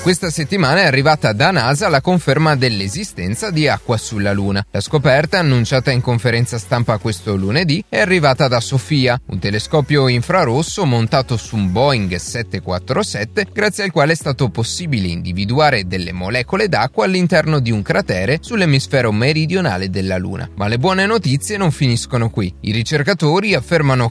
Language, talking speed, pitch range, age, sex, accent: Italian, 150 wpm, 110-165 Hz, 30-49, male, native